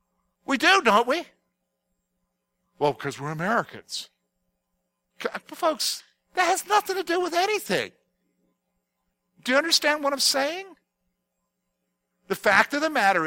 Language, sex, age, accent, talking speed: English, male, 50-69, American, 120 wpm